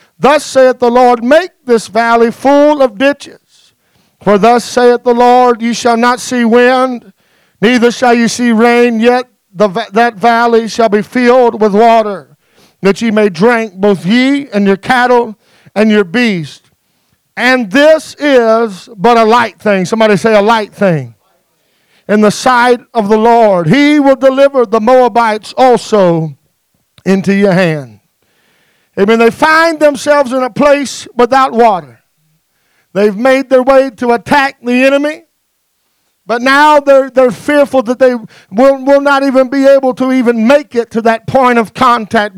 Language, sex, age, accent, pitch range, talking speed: English, male, 50-69, American, 210-255 Hz, 160 wpm